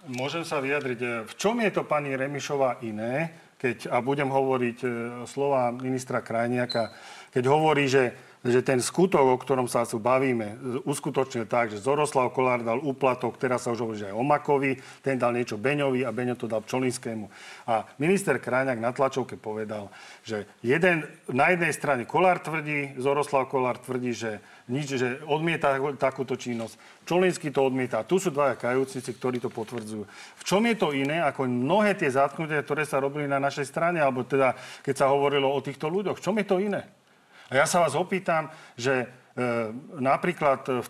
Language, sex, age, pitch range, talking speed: Slovak, male, 40-59, 125-155 Hz, 175 wpm